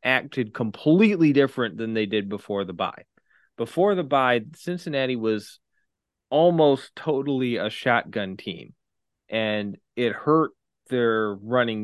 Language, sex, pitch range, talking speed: English, male, 105-125 Hz, 120 wpm